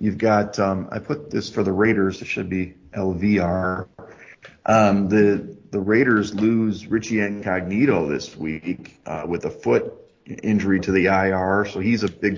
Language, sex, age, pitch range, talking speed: English, male, 30-49, 95-110 Hz, 170 wpm